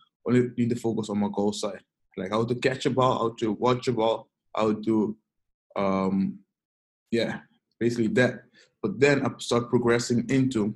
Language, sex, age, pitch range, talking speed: English, male, 20-39, 100-120 Hz, 175 wpm